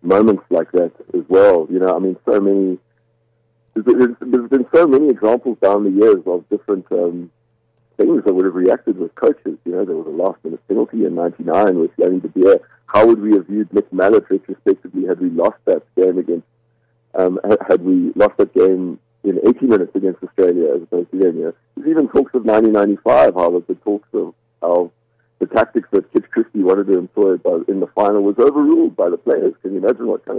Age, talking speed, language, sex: 50-69, 205 wpm, English, male